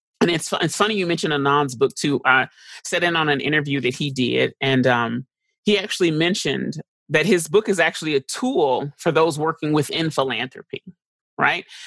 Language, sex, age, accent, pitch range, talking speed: English, male, 30-49, American, 145-190 Hz, 185 wpm